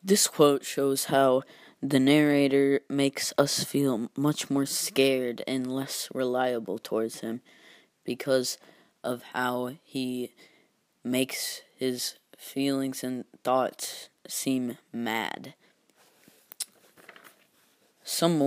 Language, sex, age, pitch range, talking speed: English, female, 20-39, 125-140 Hz, 95 wpm